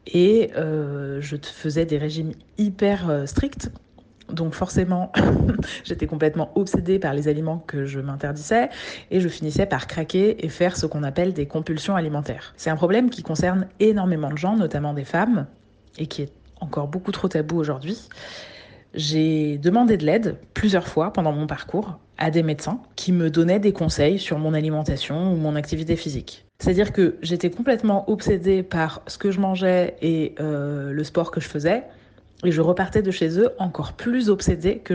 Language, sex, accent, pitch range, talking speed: French, female, French, 150-190 Hz, 175 wpm